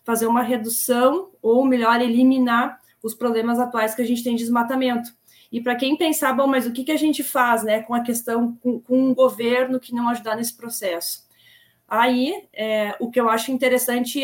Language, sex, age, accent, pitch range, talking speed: Portuguese, female, 20-39, Brazilian, 225-260 Hz, 195 wpm